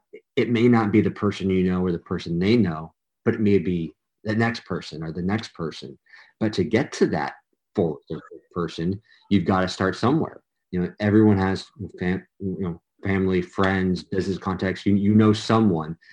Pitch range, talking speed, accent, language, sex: 90-105 Hz, 190 wpm, American, English, male